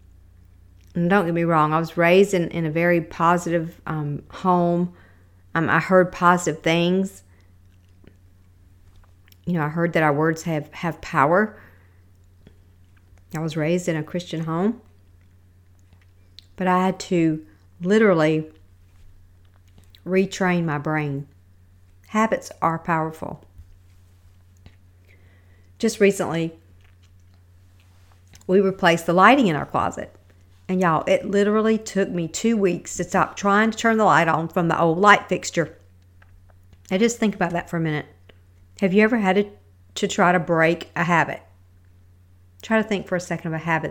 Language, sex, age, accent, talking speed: English, female, 50-69, American, 145 wpm